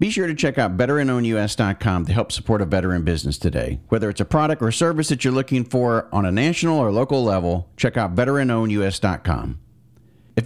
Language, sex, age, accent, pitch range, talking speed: English, male, 40-59, American, 100-130 Hz, 190 wpm